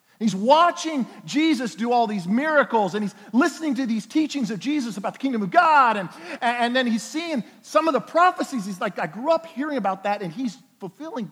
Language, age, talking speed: English, 50-69, 210 wpm